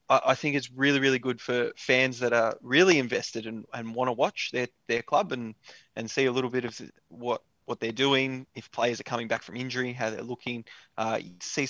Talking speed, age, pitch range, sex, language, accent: 225 wpm, 20-39, 115-135 Hz, male, English, Australian